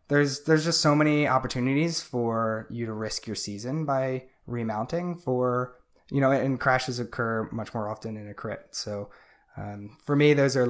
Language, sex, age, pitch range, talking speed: English, male, 20-39, 110-130 Hz, 180 wpm